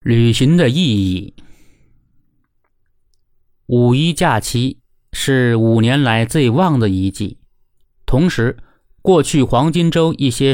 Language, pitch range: Chinese, 105-140 Hz